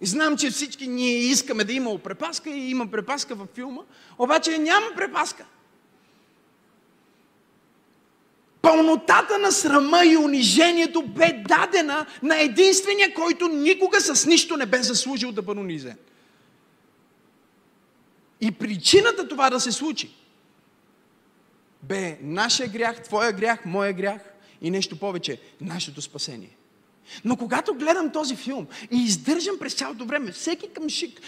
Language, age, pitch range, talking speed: Bulgarian, 30-49, 180-305 Hz, 125 wpm